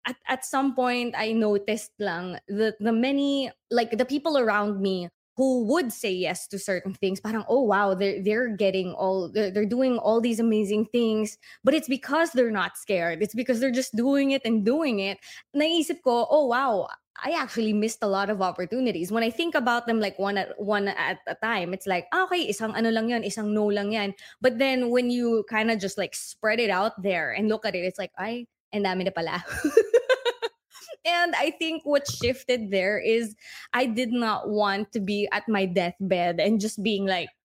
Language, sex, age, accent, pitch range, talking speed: English, female, 20-39, Filipino, 195-250 Hz, 205 wpm